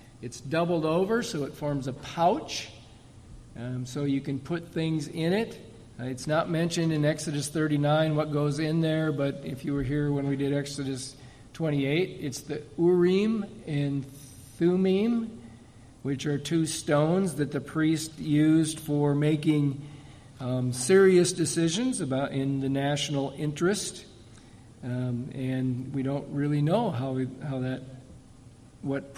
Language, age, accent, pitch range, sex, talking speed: English, 50-69, American, 135-160 Hz, male, 145 wpm